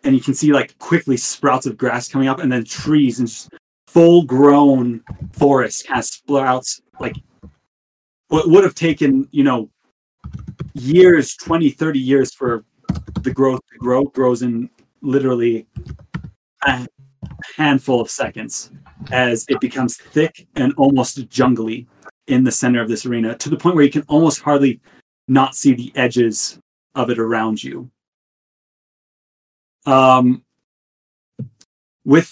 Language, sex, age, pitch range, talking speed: English, male, 30-49, 120-145 Hz, 140 wpm